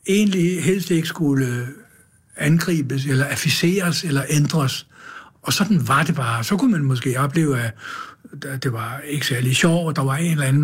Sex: male